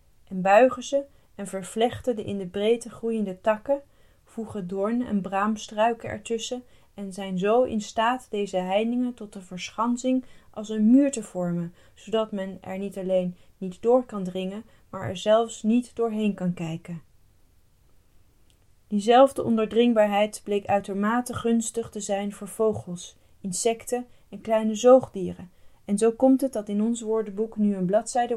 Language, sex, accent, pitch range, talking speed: Dutch, female, Dutch, 185-225 Hz, 150 wpm